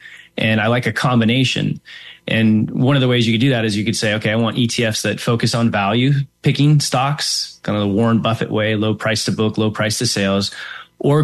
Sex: male